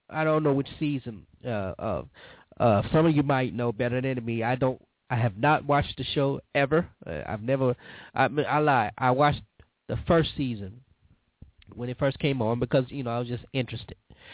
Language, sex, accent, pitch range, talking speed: English, male, American, 110-140 Hz, 205 wpm